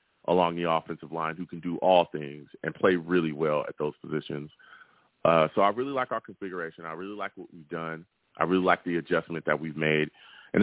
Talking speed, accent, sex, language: 215 wpm, American, male, English